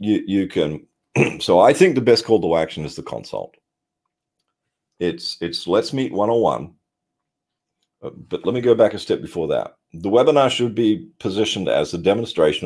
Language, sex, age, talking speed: English, male, 40-59, 180 wpm